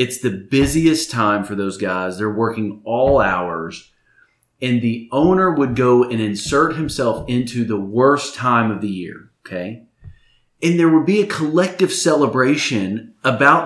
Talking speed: 155 wpm